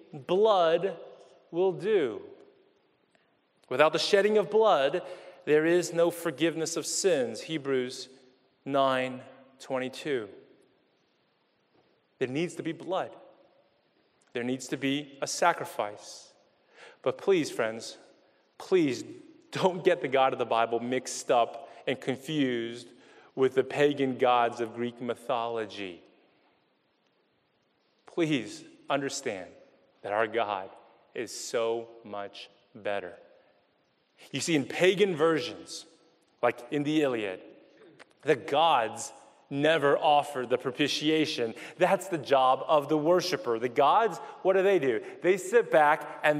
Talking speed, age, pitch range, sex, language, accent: 120 wpm, 30-49, 130-180 Hz, male, English, American